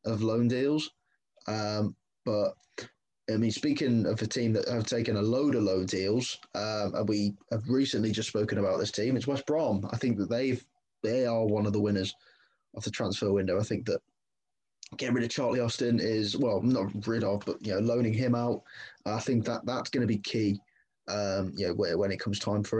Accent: British